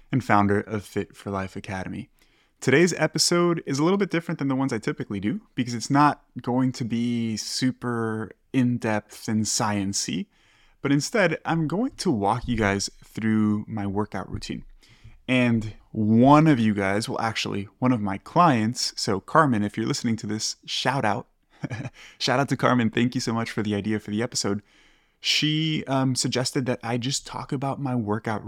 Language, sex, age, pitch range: English, male, 20-39, 105-130 Hz